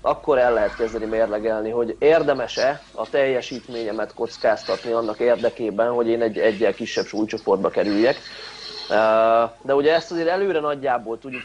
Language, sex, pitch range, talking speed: Hungarian, male, 115-140 Hz, 130 wpm